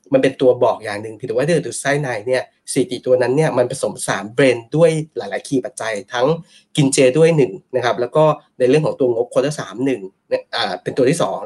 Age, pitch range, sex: 20-39, 125-160 Hz, male